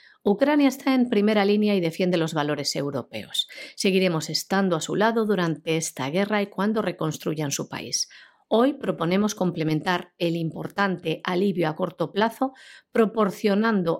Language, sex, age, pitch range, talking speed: Spanish, female, 50-69, 170-215 Hz, 140 wpm